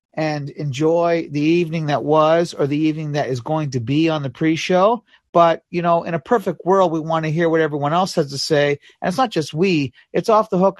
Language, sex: English, male